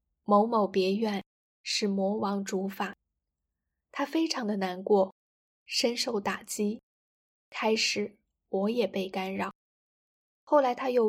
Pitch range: 195-225 Hz